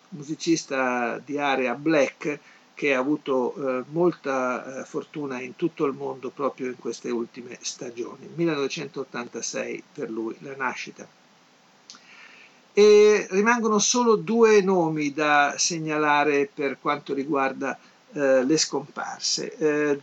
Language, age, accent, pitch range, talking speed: Italian, 50-69, native, 140-175 Hz, 115 wpm